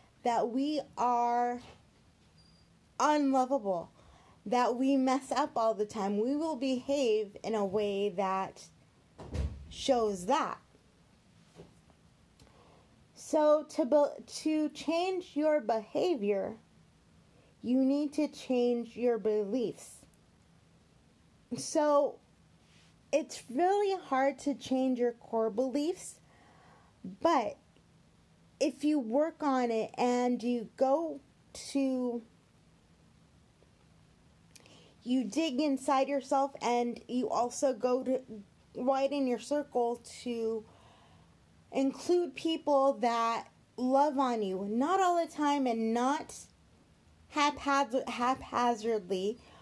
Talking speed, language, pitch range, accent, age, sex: 95 wpm, English, 235-285 Hz, American, 20-39, female